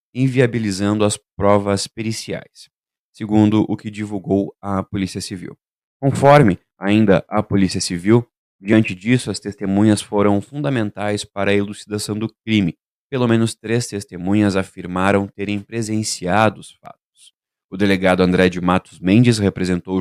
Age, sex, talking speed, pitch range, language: 20-39, male, 130 wpm, 95-110 Hz, Portuguese